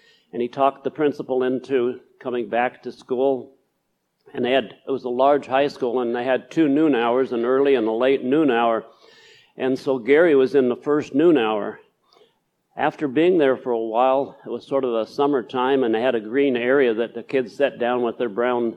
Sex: male